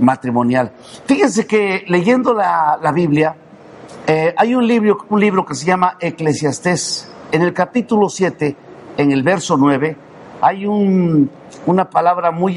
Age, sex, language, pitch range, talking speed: 50-69, male, Spanish, 160-210 Hz, 145 wpm